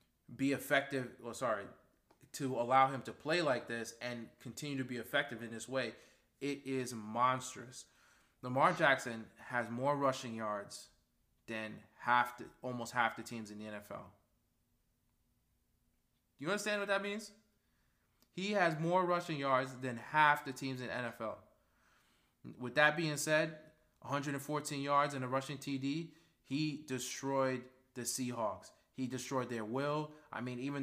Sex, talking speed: male, 150 wpm